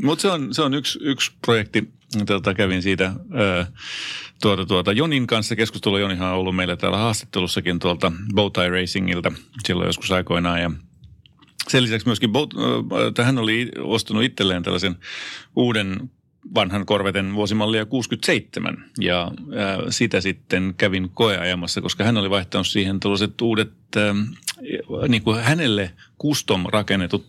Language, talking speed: Finnish, 140 wpm